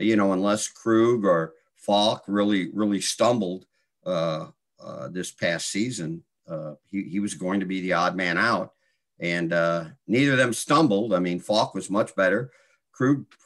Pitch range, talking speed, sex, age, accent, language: 90-125 Hz, 170 wpm, male, 50-69, American, English